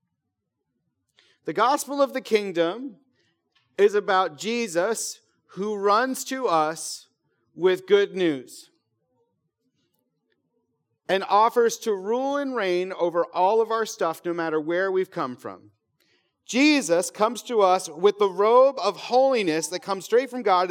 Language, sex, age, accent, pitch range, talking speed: English, male, 40-59, American, 155-205 Hz, 135 wpm